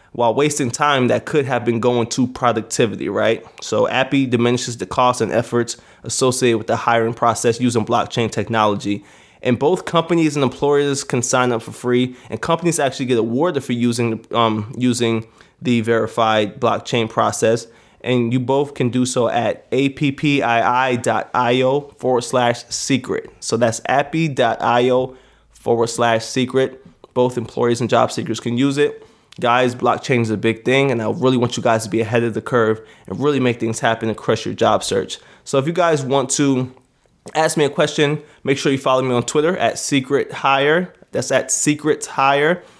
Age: 20-39